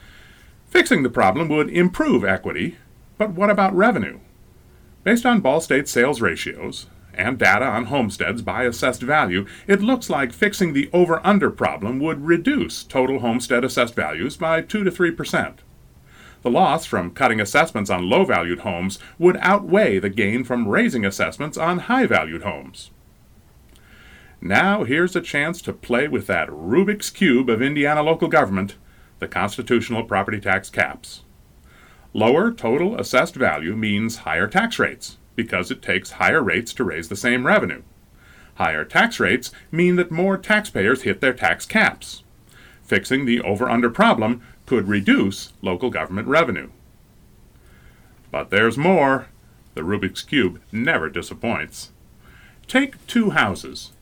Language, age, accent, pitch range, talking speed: English, 30-49, American, 120-195 Hz, 140 wpm